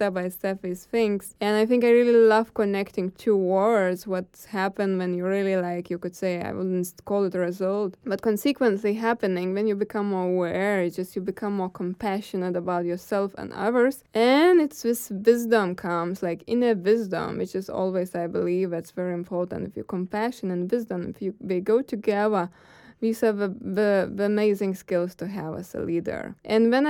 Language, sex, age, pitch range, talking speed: English, female, 20-39, 190-230 Hz, 190 wpm